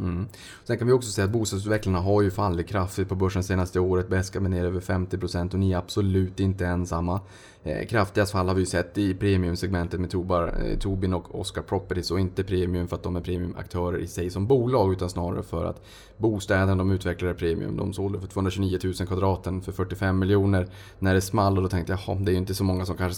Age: 20-39